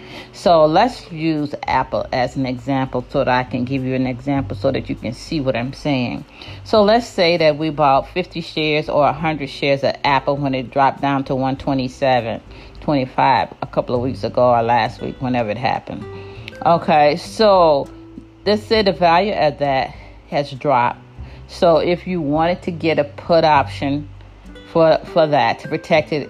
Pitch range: 130-170 Hz